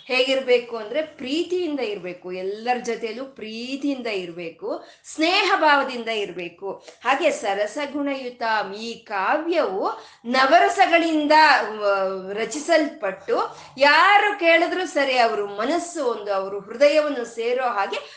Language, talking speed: Kannada, 90 wpm